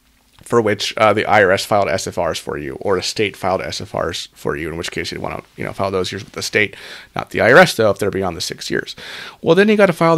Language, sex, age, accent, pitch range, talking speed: English, male, 30-49, American, 105-135 Hz, 270 wpm